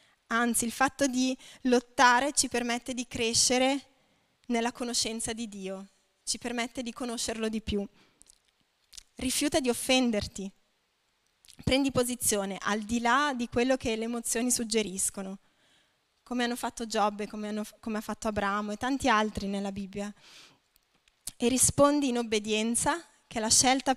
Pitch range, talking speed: 220-255 Hz, 135 wpm